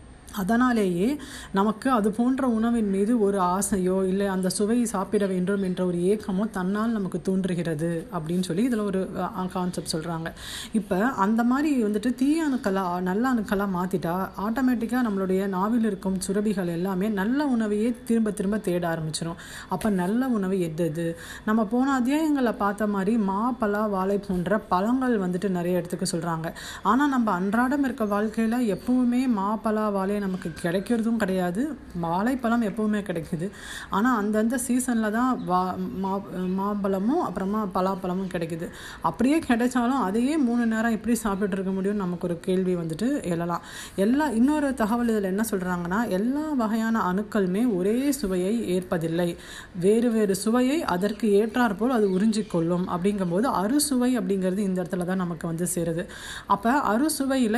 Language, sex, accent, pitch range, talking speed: Tamil, female, native, 185-235 Hz, 105 wpm